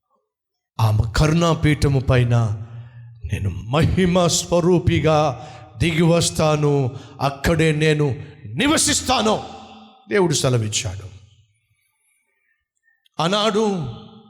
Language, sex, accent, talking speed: Telugu, male, native, 50 wpm